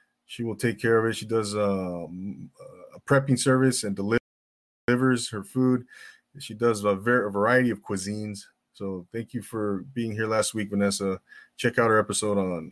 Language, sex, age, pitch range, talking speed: English, male, 30-49, 100-130 Hz, 180 wpm